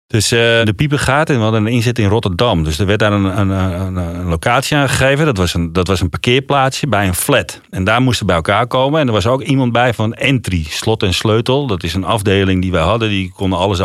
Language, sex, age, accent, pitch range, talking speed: Dutch, male, 40-59, Dutch, 95-130 Hz, 255 wpm